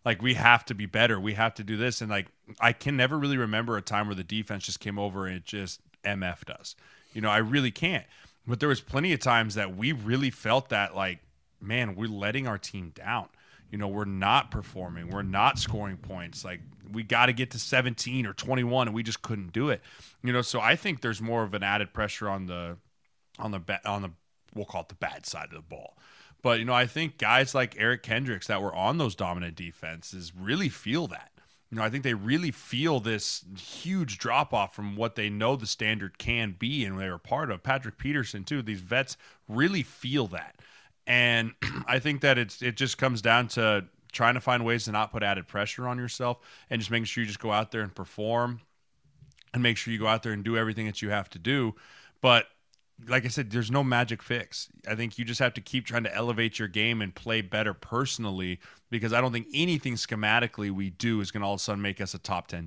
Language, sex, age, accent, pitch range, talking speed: English, male, 20-39, American, 100-125 Hz, 235 wpm